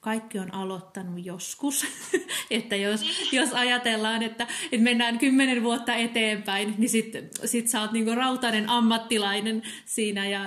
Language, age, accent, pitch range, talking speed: Finnish, 30-49, native, 195-230 Hz, 140 wpm